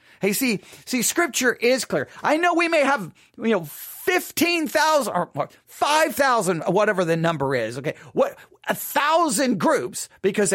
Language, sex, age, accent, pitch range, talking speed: English, male, 40-59, American, 150-245 Hz, 140 wpm